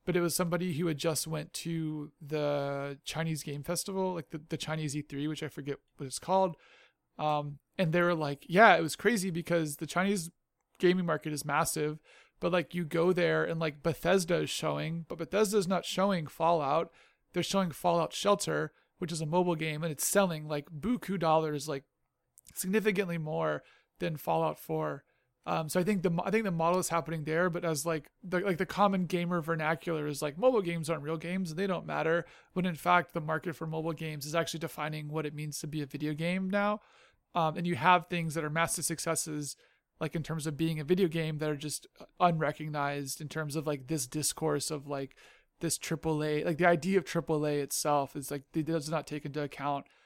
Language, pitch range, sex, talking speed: English, 150-175 Hz, male, 210 wpm